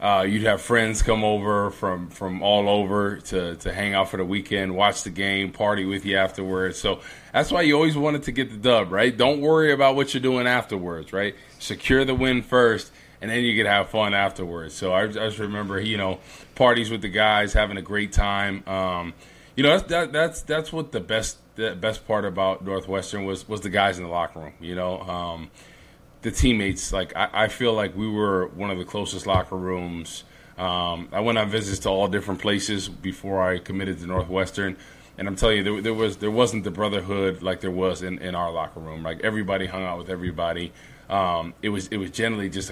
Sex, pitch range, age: male, 95-110 Hz, 20-39